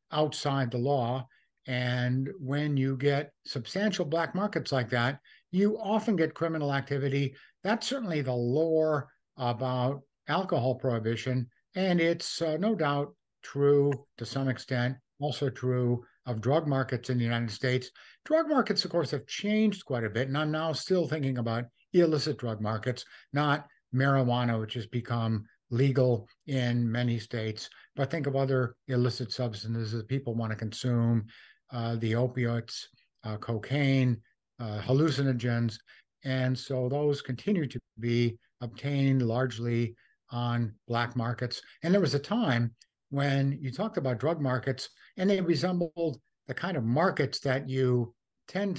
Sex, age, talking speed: male, 60-79, 145 wpm